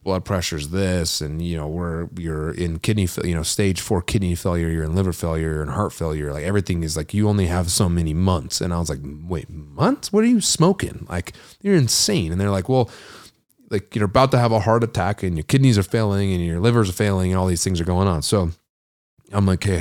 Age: 30-49